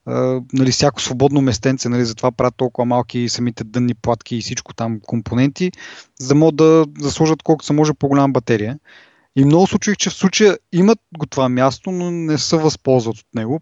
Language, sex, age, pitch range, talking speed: Bulgarian, male, 30-49, 120-150 Hz, 185 wpm